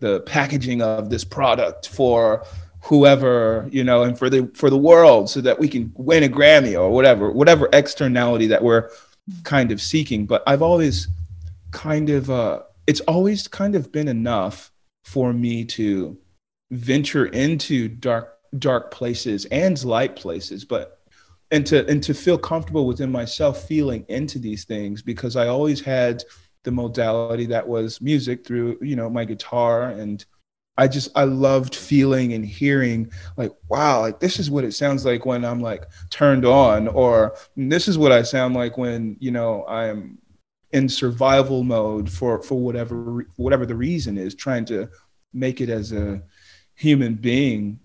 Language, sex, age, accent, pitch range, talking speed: English, male, 30-49, American, 110-140 Hz, 165 wpm